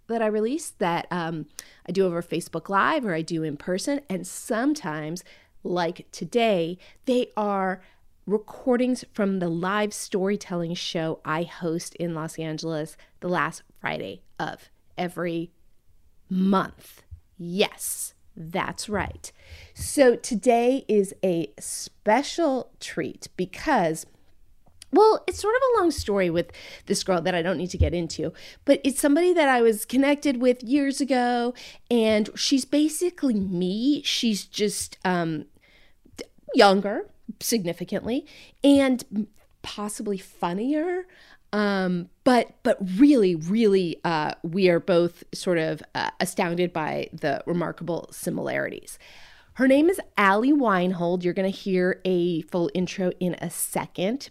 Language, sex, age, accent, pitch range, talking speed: English, female, 30-49, American, 175-245 Hz, 130 wpm